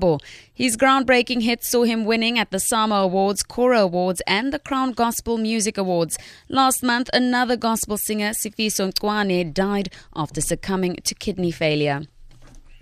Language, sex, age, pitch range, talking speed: English, female, 20-39, 180-230 Hz, 145 wpm